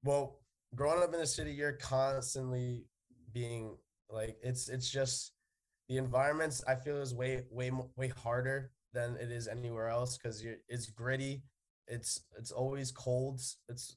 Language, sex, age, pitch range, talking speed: English, male, 20-39, 110-125 Hz, 155 wpm